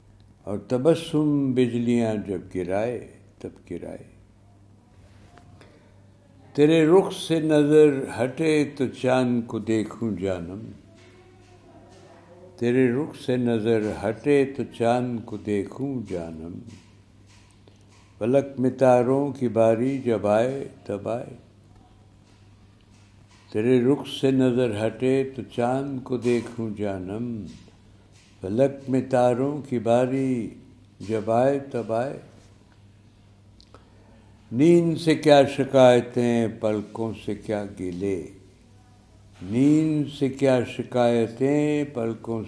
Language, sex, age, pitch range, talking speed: Urdu, male, 60-79, 100-130 Hz, 95 wpm